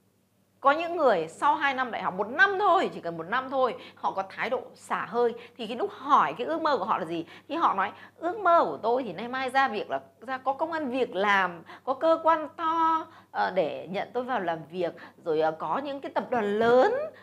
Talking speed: 240 wpm